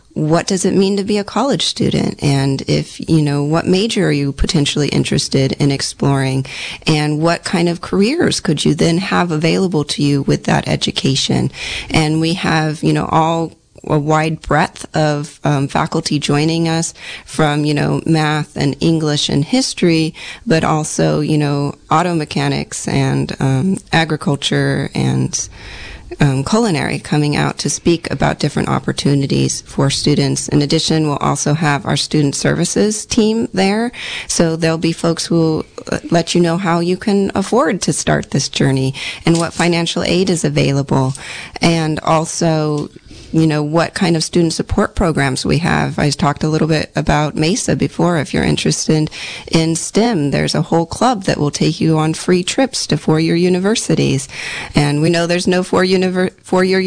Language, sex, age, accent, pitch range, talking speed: English, female, 30-49, American, 145-175 Hz, 165 wpm